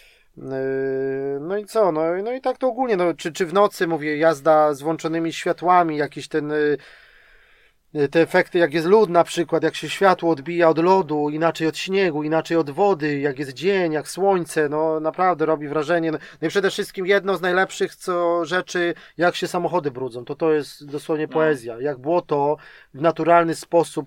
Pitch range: 155-185 Hz